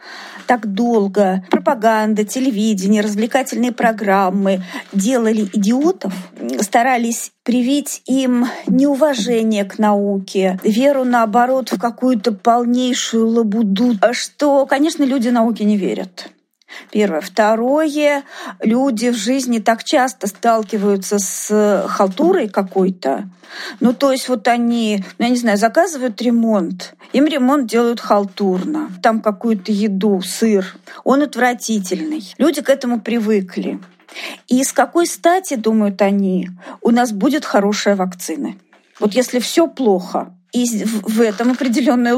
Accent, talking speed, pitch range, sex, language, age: native, 115 wpm, 205-255 Hz, female, Russian, 40-59